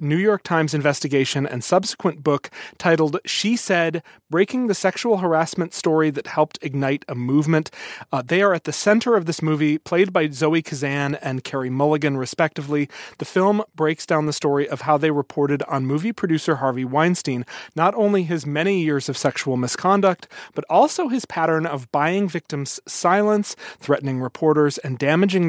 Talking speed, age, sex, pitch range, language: 170 wpm, 30-49, male, 140-175 Hz, English